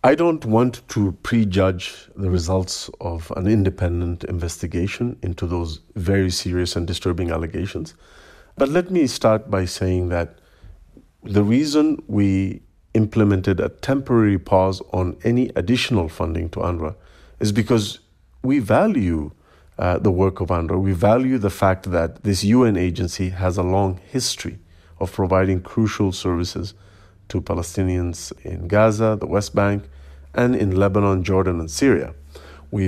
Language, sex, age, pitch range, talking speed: English, male, 40-59, 90-105 Hz, 140 wpm